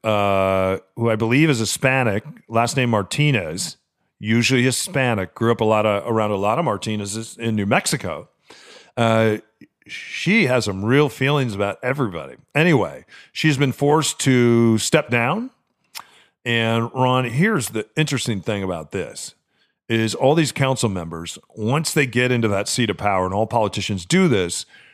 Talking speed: 160 wpm